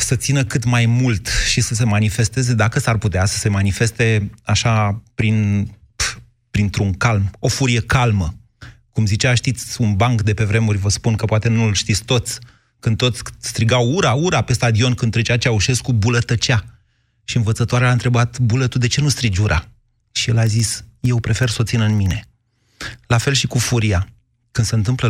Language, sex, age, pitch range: Romanian, male, 30-49, 105-125 Hz